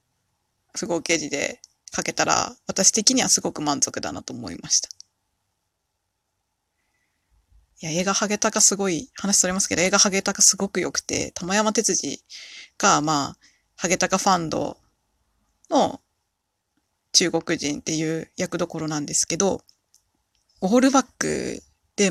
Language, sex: Japanese, female